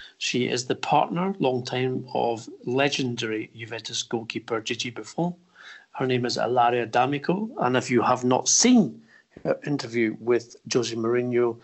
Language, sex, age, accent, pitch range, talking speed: English, male, 50-69, British, 120-150 Hz, 145 wpm